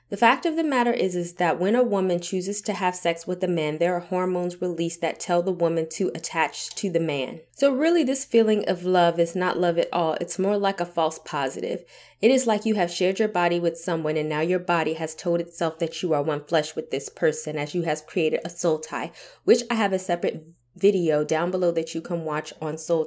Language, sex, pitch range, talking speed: English, female, 160-185 Hz, 245 wpm